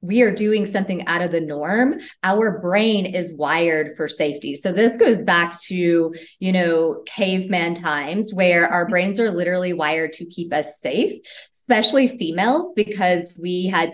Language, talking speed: English, 165 wpm